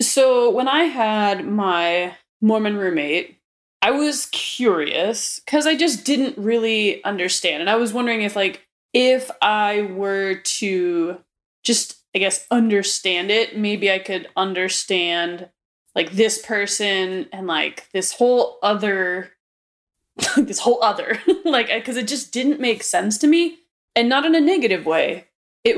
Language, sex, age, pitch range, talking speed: English, female, 20-39, 195-285 Hz, 145 wpm